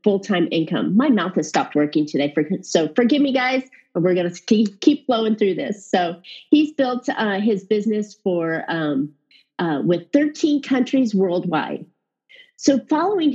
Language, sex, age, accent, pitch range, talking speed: English, female, 40-59, American, 180-245 Hz, 155 wpm